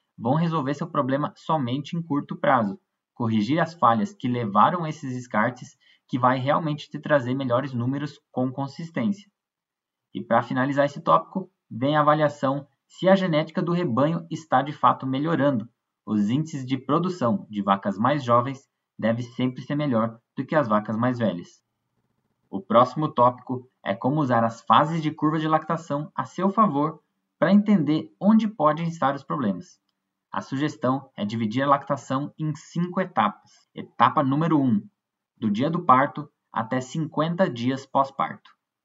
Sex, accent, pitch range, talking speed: male, Brazilian, 130-170 Hz, 155 wpm